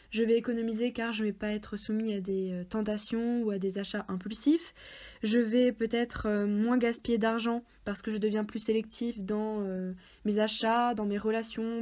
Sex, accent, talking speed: female, French, 185 wpm